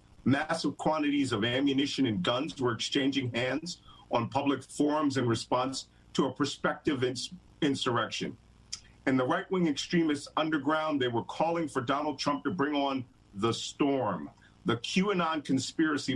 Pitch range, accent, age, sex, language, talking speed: 125-155 Hz, American, 50-69, male, English, 135 wpm